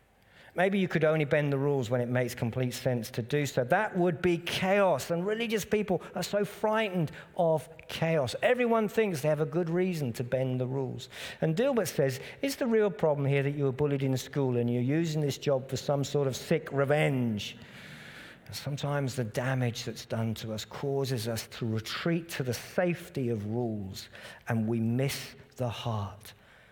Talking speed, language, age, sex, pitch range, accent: 190 wpm, English, 50-69, male, 110-155 Hz, British